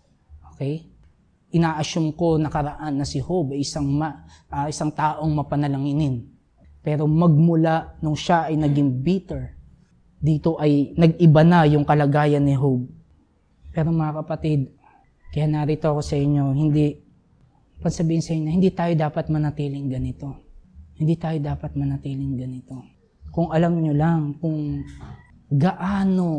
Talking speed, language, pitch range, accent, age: 125 wpm, Filipino, 140-175 Hz, native, 20-39